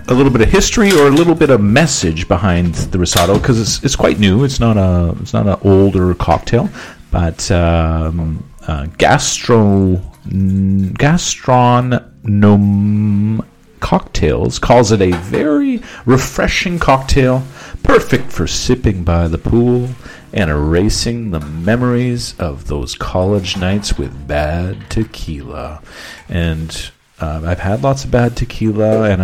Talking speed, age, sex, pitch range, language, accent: 130 wpm, 40-59, male, 85-115 Hz, English, American